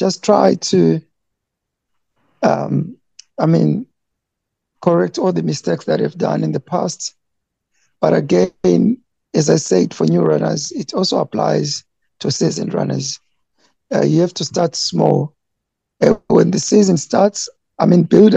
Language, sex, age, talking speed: English, male, 60-79, 145 wpm